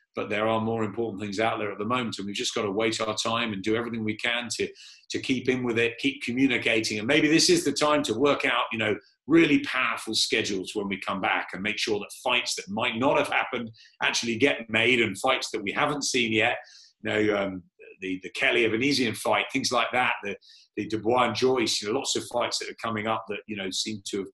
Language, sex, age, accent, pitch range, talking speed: English, male, 40-59, British, 110-130 Hz, 245 wpm